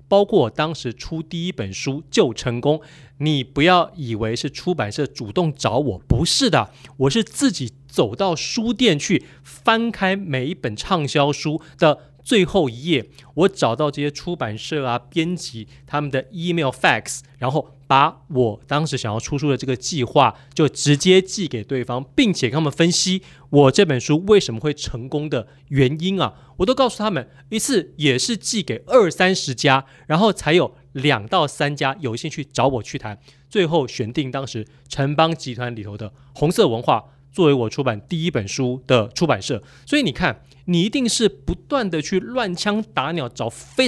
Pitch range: 135-180 Hz